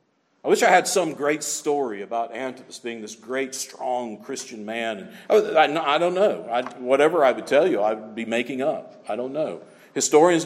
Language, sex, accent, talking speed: English, male, American, 185 wpm